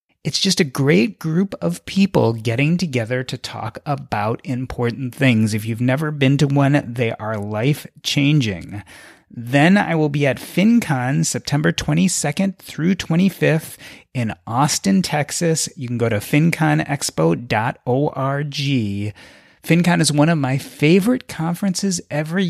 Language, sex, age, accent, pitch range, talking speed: English, male, 30-49, American, 125-170 Hz, 130 wpm